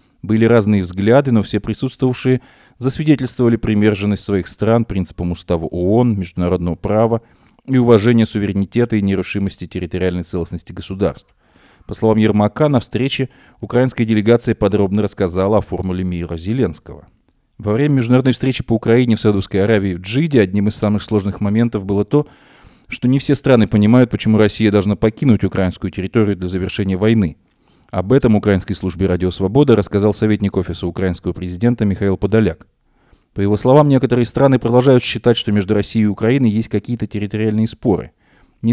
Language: Russian